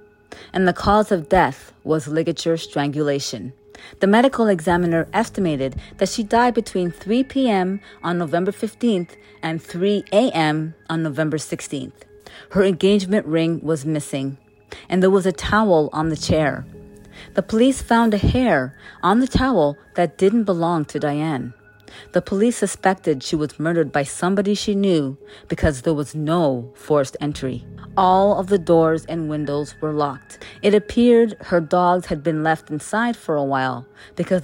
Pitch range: 145-195 Hz